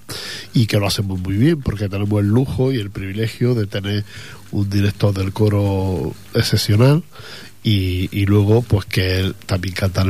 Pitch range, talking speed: 100-120 Hz, 170 wpm